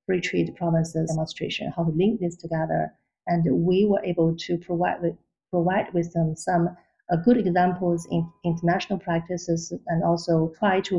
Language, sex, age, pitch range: Chinese, female, 40-59, 165-190 Hz